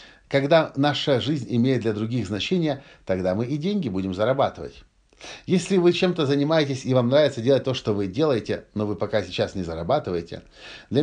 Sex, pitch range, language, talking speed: male, 100-140 Hz, Russian, 175 wpm